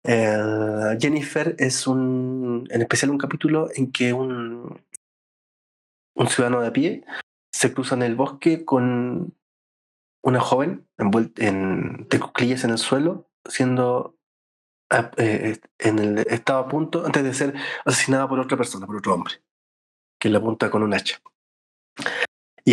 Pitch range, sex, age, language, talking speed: 110-130 Hz, male, 20-39, Spanish, 150 wpm